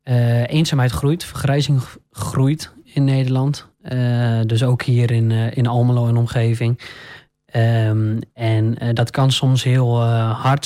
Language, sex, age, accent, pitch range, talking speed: Dutch, male, 20-39, Dutch, 115-130 Hz, 160 wpm